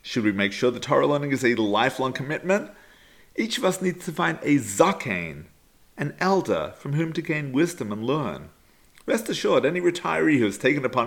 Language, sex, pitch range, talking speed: English, male, 135-195 Hz, 195 wpm